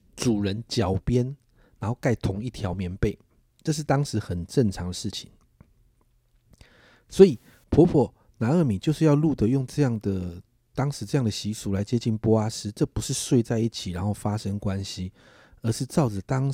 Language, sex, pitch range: Chinese, male, 105-130 Hz